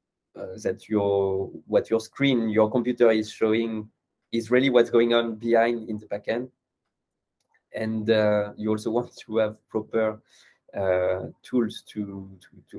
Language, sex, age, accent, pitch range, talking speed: English, male, 20-39, French, 105-120 Hz, 150 wpm